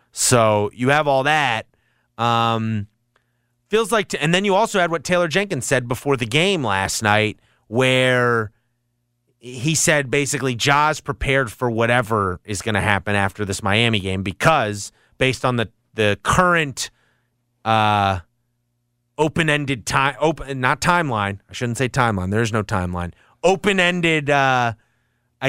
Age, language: 30-49, English